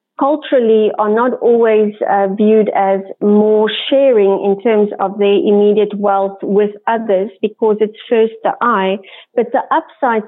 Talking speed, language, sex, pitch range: 145 wpm, English, female, 200-230 Hz